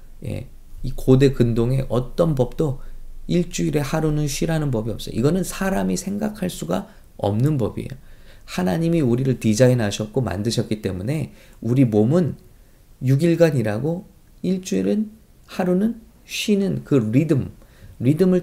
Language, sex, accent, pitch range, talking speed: English, male, Korean, 110-170 Hz, 100 wpm